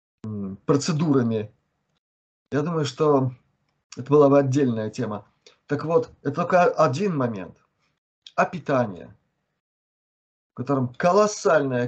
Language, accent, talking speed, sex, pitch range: Russian, native, 100 wpm, male, 125-165 Hz